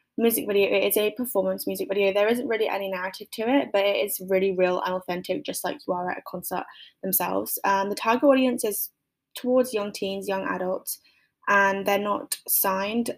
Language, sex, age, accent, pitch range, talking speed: English, female, 10-29, British, 185-210 Hz, 195 wpm